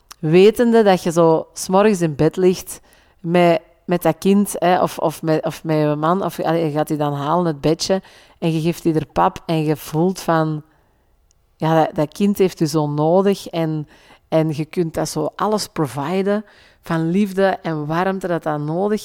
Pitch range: 155-200 Hz